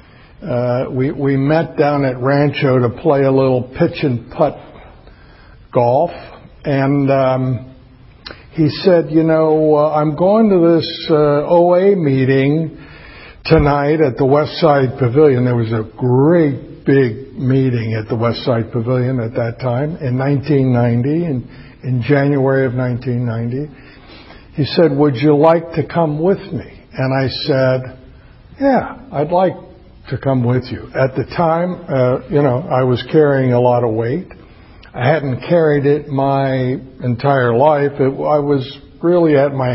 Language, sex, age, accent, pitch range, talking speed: English, male, 60-79, American, 125-155 Hz, 150 wpm